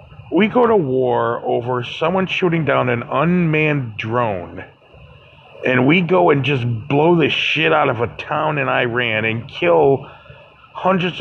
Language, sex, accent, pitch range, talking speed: English, male, American, 115-150 Hz, 150 wpm